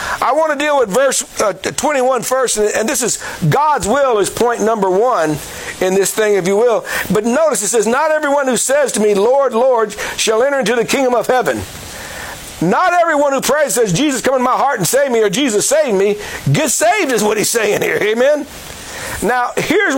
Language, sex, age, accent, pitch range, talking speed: English, male, 60-79, American, 235-310 Hz, 210 wpm